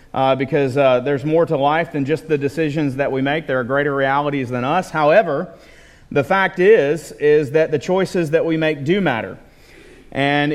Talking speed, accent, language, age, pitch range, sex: 195 wpm, American, English, 40-59, 150-185 Hz, male